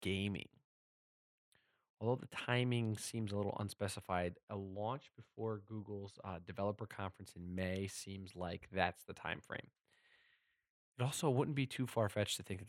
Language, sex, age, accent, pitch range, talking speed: English, male, 20-39, American, 95-110 Hz, 150 wpm